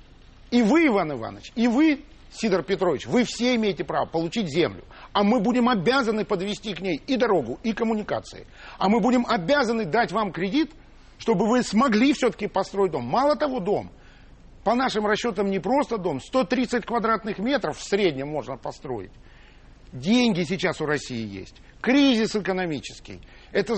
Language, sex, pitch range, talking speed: Russian, male, 160-230 Hz, 155 wpm